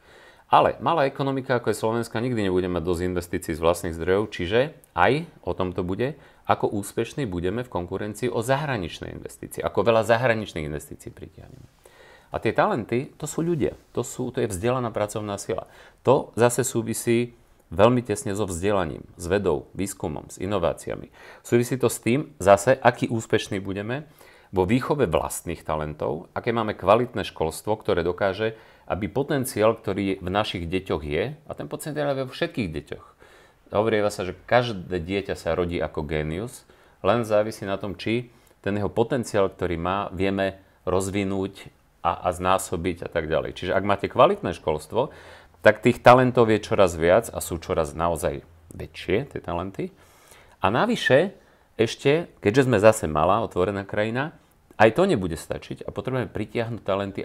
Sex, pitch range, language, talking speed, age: male, 90-120 Hz, Slovak, 160 wpm, 40-59